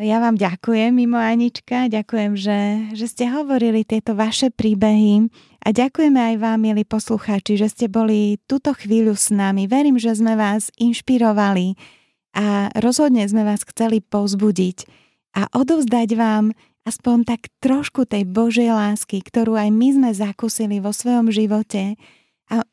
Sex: female